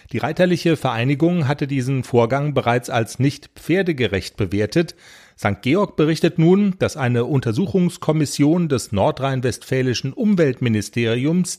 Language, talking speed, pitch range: German, 110 wpm, 115-160 Hz